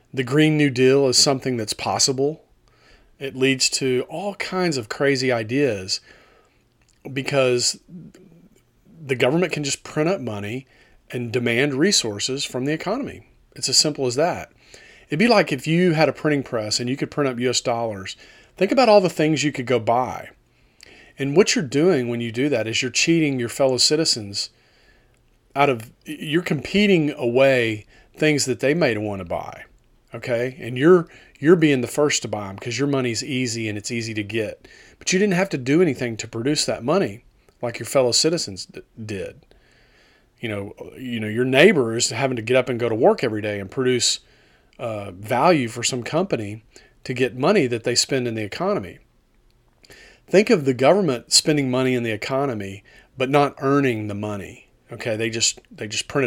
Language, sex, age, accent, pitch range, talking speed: English, male, 40-59, American, 115-150 Hz, 185 wpm